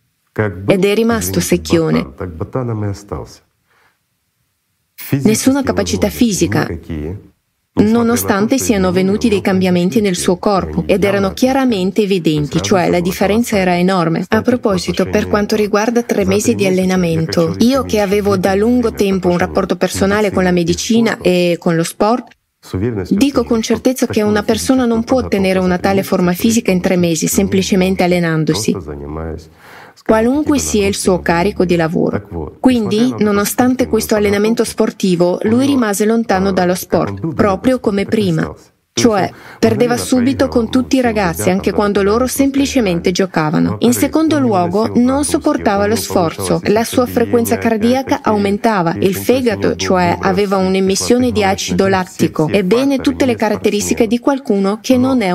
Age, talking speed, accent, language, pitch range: 30-49, 140 wpm, native, Italian, 185-235 Hz